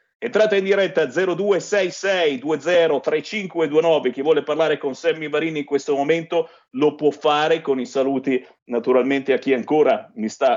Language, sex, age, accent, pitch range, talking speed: Italian, male, 50-69, native, 135-180 Hz, 140 wpm